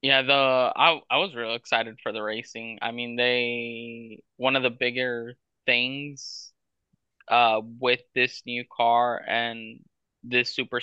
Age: 20-39